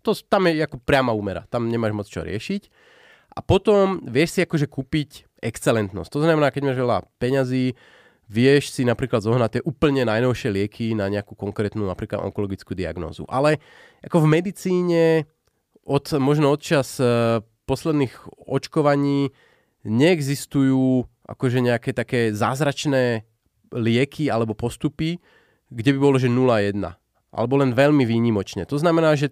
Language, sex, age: Slovak, male, 30-49